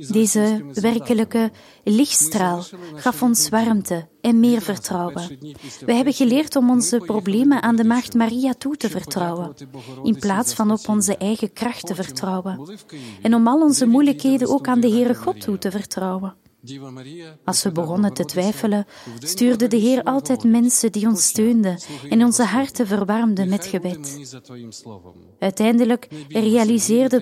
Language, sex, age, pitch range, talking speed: Dutch, female, 30-49, 185-235 Hz, 145 wpm